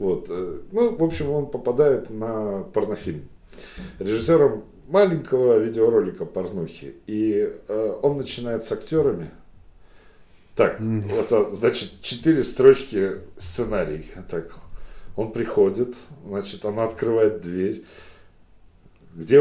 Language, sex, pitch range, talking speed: Russian, male, 120-185 Hz, 95 wpm